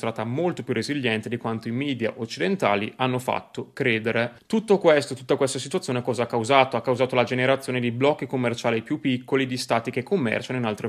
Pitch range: 115-135 Hz